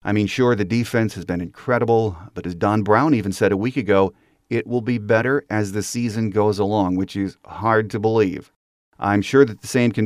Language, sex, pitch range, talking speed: English, male, 100-120 Hz, 220 wpm